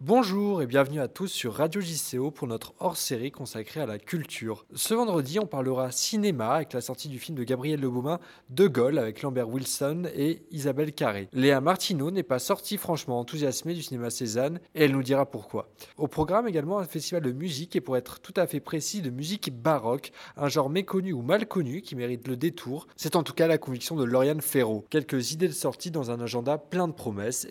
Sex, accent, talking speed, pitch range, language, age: male, French, 215 wpm, 130-175 Hz, French, 20-39